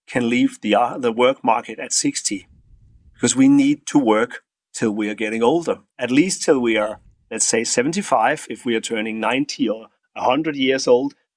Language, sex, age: English, male, 40-59